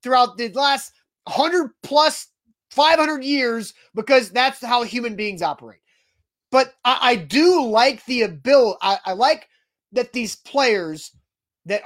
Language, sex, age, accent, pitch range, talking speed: English, male, 30-49, American, 215-265 Hz, 130 wpm